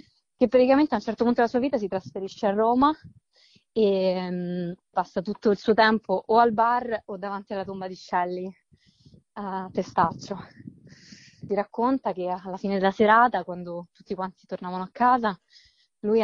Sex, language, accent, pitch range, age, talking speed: female, Italian, native, 190-230 Hz, 20-39, 165 wpm